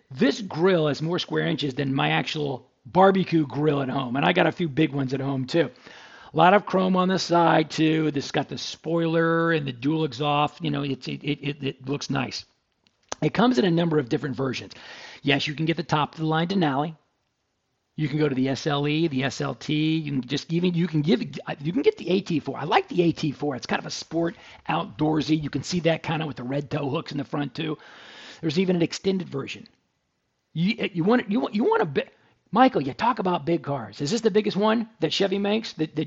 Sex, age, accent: male, 50-69, American